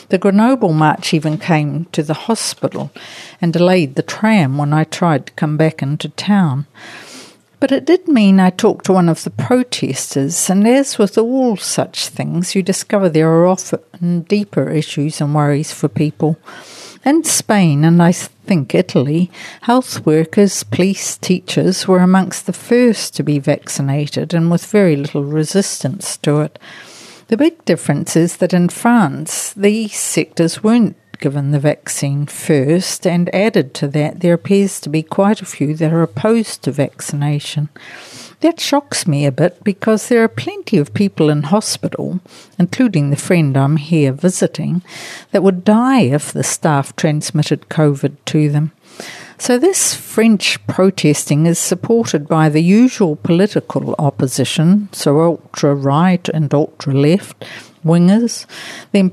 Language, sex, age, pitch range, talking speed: English, female, 60-79, 150-200 Hz, 150 wpm